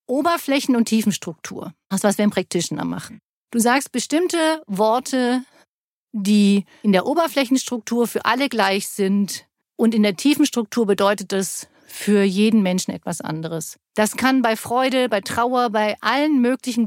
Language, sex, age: German, female, 50-69